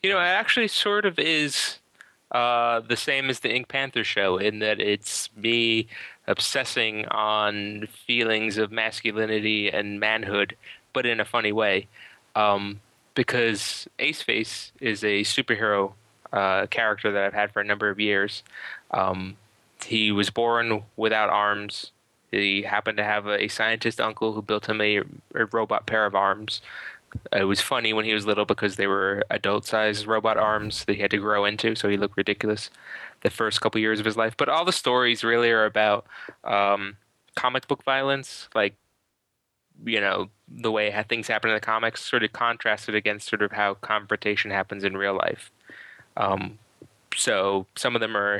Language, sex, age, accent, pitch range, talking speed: English, male, 20-39, American, 105-115 Hz, 175 wpm